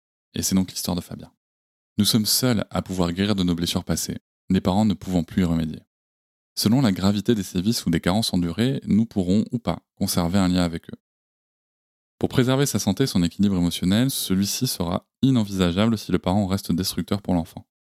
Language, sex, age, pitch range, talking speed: French, male, 20-39, 85-105 Hz, 195 wpm